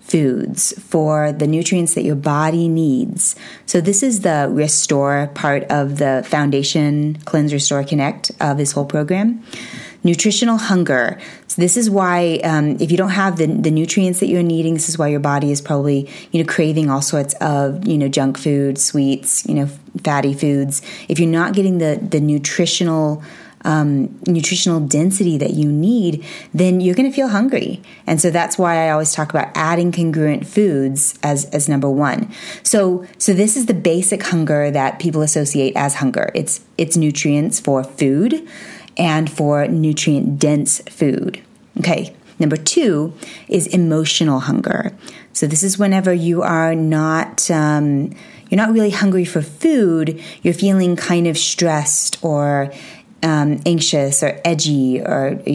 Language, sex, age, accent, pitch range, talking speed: English, female, 20-39, American, 145-180 Hz, 165 wpm